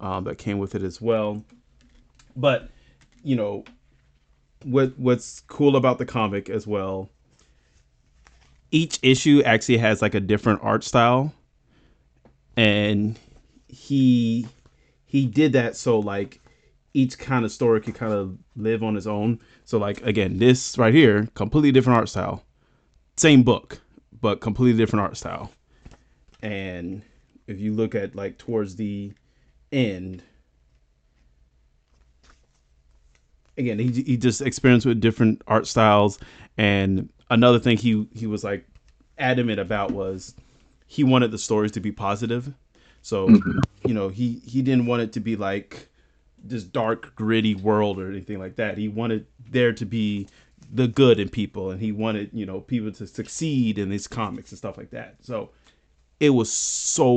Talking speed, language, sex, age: 150 wpm, English, male, 30-49